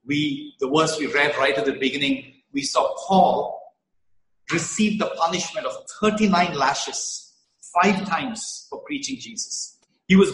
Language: English